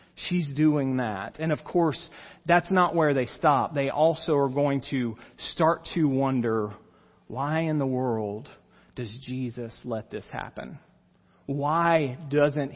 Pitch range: 140-185 Hz